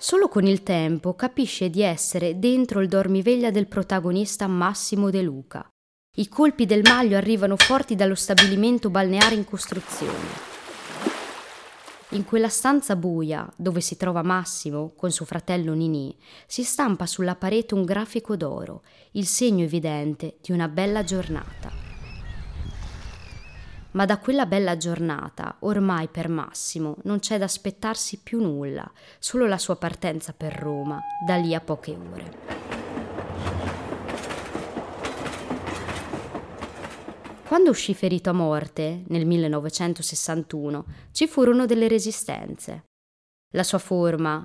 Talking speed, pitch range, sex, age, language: 125 wpm, 160-210 Hz, female, 20-39, Italian